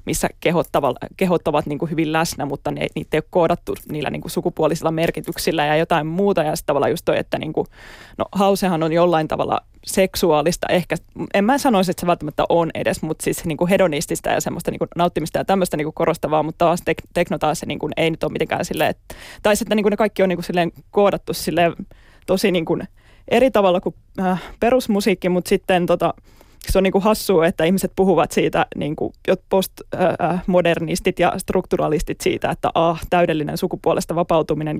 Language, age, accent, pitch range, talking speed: Finnish, 20-39, native, 165-185 Hz, 180 wpm